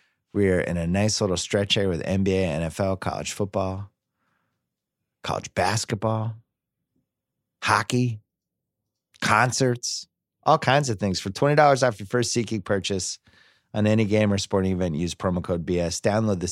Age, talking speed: 30-49, 145 wpm